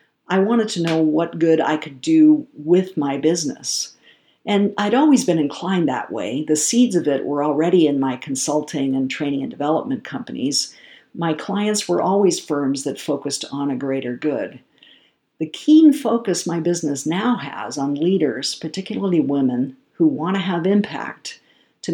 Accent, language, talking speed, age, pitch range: American, English, 165 wpm, 50-69, 150-195 Hz